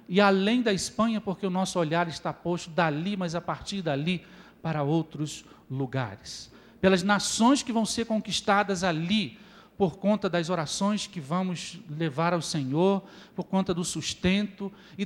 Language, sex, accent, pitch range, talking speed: Spanish, male, Brazilian, 160-225 Hz, 155 wpm